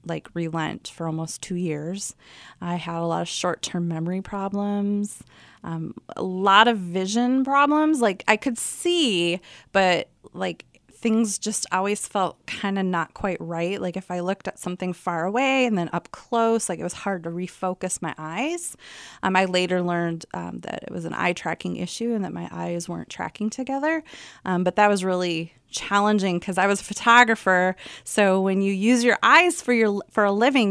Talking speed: 190 wpm